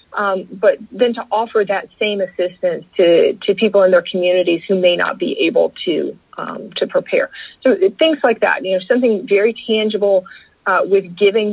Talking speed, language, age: 180 wpm, English, 40-59